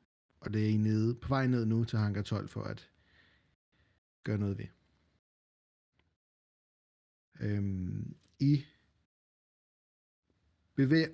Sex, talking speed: male, 110 wpm